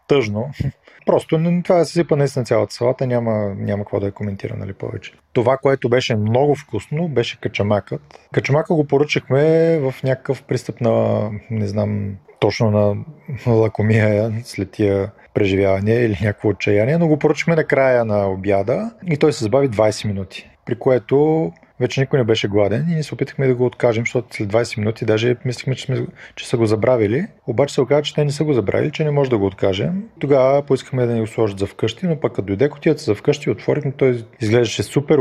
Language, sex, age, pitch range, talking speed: Bulgarian, male, 30-49, 105-145 Hz, 195 wpm